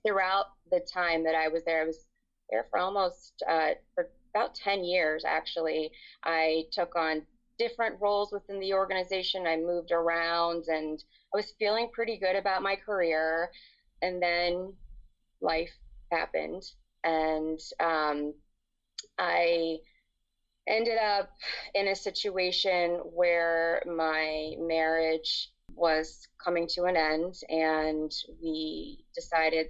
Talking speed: 120 wpm